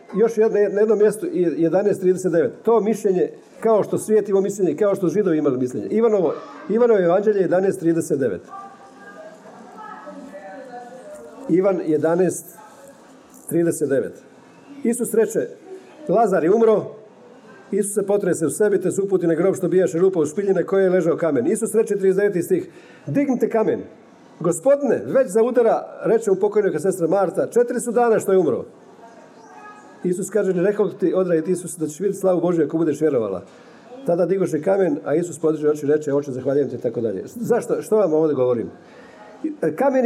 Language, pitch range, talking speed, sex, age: Croatian, 180-235 Hz, 150 wpm, male, 50-69